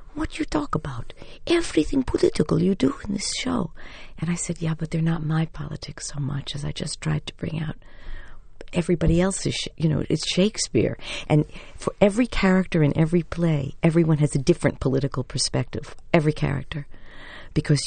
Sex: female